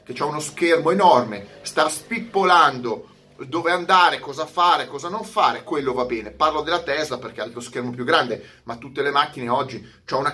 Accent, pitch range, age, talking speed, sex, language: native, 120-185 Hz, 30-49, 190 wpm, male, Italian